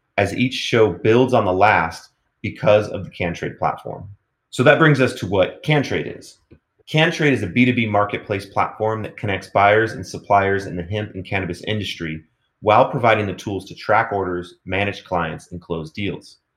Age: 30-49